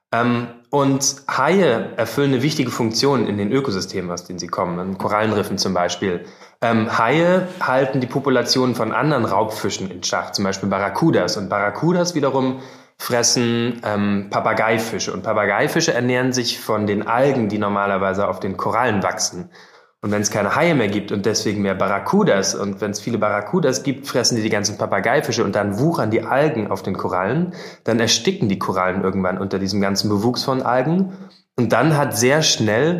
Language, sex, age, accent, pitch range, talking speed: German, male, 20-39, German, 105-135 Hz, 175 wpm